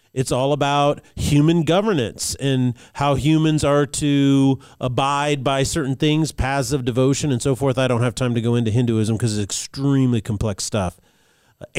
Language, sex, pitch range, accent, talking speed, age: English, male, 130-165 Hz, American, 175 wpm, 40-59